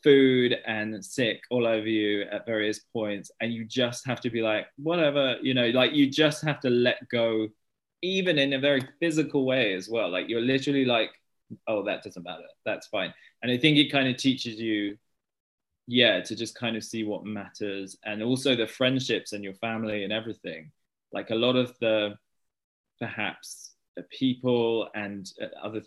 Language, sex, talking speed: English, male, 185 wpm